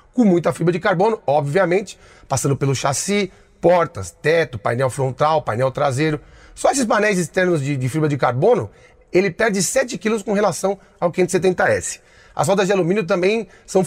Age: 30-49